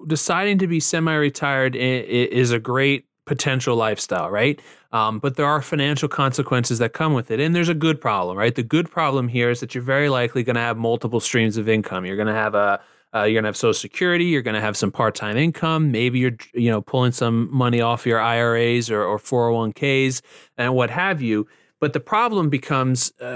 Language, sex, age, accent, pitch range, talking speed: English, male, 30-49, American, 120-150 Hz, 210 wpm